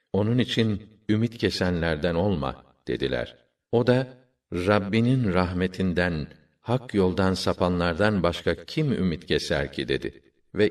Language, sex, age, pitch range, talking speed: Turkish, male, 50-69, 90-115 Hz, 110 wpm